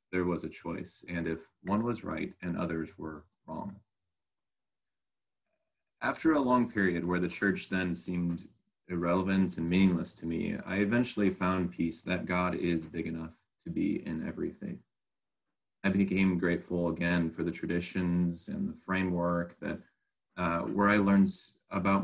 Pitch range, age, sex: 85-100 Hz, 30-49, male